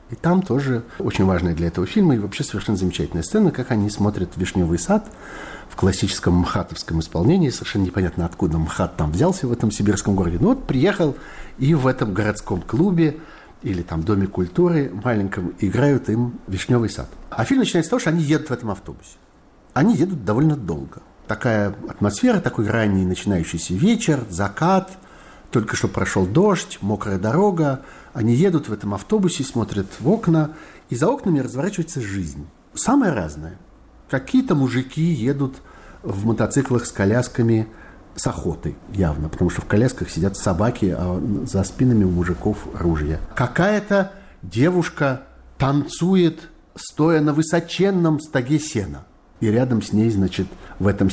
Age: 60-79